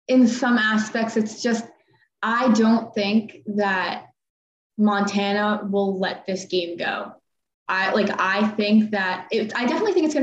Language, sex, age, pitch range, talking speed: English, female, 20-39, 190-225 Hz, 155 wpm